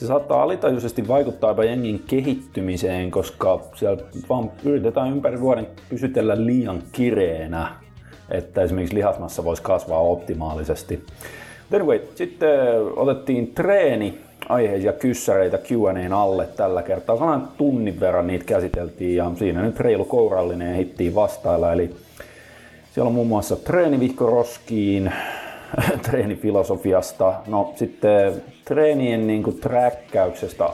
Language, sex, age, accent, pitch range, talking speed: Finnish, male, 30-49, native, 90-125 Hz, 105 wpm